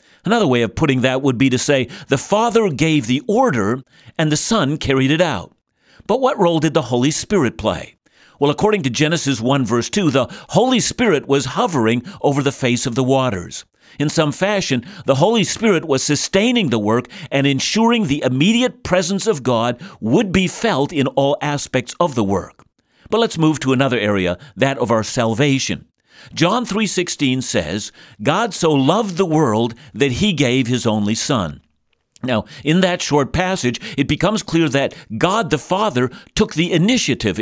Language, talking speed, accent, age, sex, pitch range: English, 180 wpm, American, 50-69, male, 125-175 Hz